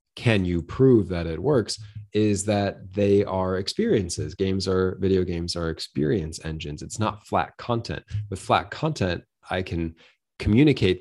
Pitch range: 85-105 Hz